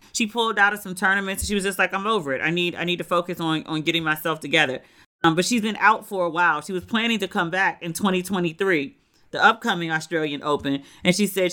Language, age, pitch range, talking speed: English, 40-59, 160-200 Hz, 250 wpm